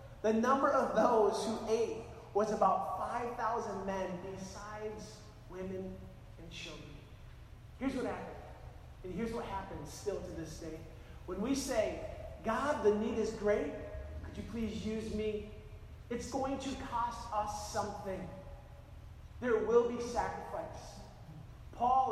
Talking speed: 135 wpm